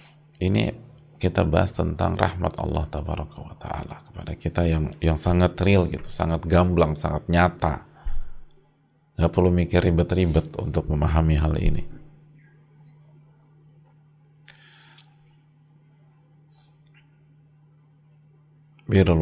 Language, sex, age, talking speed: English, male, 40-59, 90 wpm